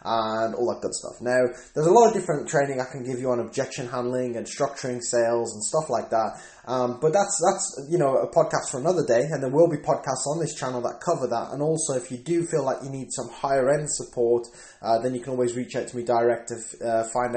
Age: 10-29